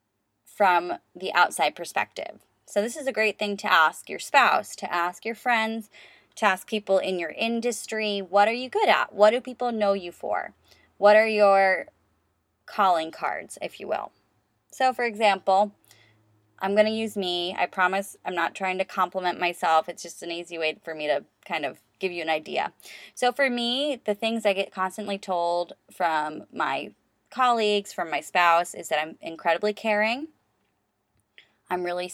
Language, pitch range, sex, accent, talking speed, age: English, 170-210 Hz, female, American, 175 wpm, 20-39